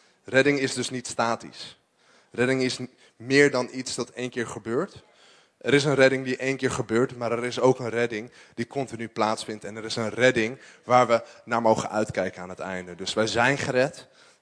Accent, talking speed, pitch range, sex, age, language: Dutch, 200 wpm, 115-140 Hz, male, 20-39, English